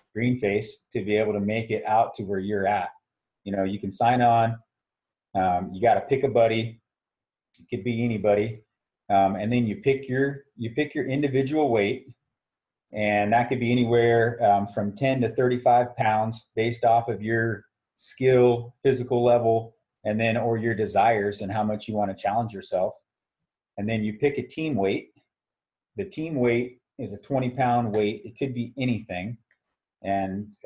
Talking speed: 180 wpm